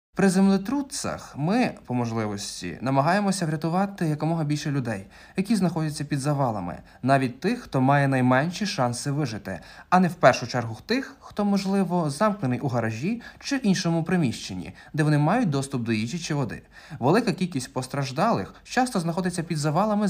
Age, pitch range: 20-39, 130-195 Hz